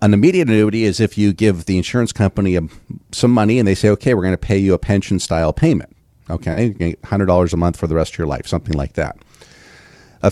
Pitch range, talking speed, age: 85-105 Hz, 220 wpm, 40-59